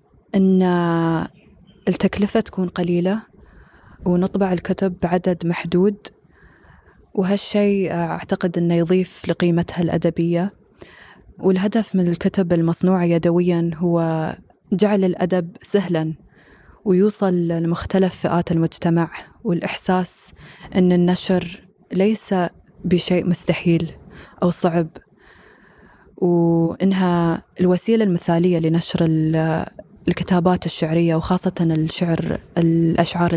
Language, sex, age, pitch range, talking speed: Arabic, female, 20-39, 170-185 Hz, 80 wpm